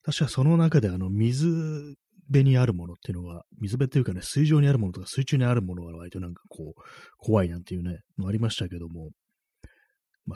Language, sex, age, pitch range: Japanese, male, 30-49, 95-135 Hz